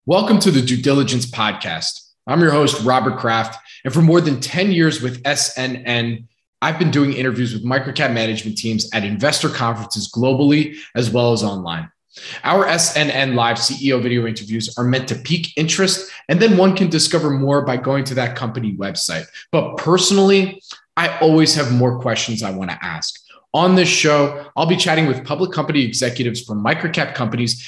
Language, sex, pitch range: English, male, 120-155 Hz